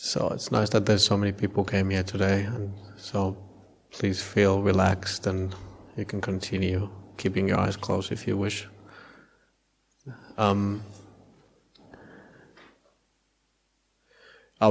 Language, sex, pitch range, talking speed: English, male, 100-110 Hz, 120 wpm